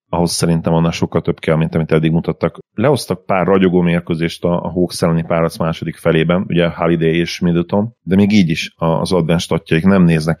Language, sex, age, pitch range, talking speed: Hungarian, male, 30-49, 80-90 Hz, 190 wpm